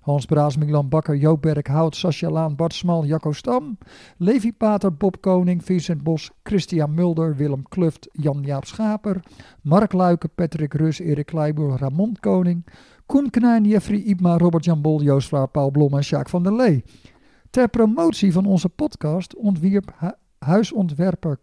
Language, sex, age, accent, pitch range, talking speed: Dutch, male, 50-69, Dutch, 145-185 Hz, 155 wpm